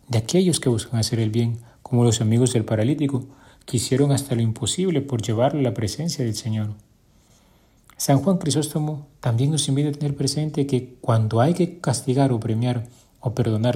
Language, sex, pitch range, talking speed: Spanish, male, 110-130 Hz, 180 wpm